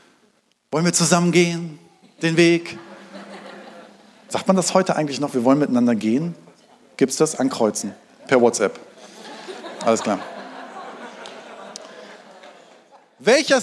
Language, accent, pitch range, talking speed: German, German, 170-230 Hz, 110 wpm